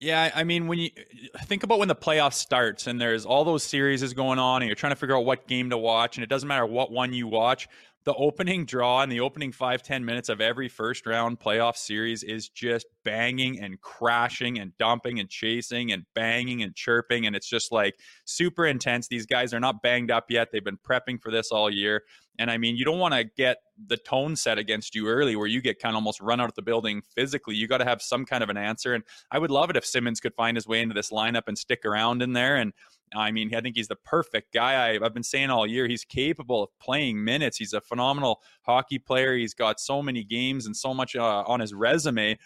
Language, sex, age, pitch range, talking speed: English, male, 20-39, 110-130 Hz, 245 wpm